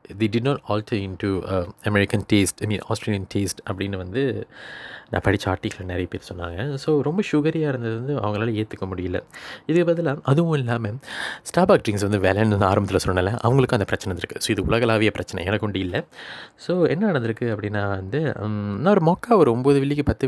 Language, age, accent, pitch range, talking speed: Tamil, 20-39, native, 100-135 Hz, 170 wpm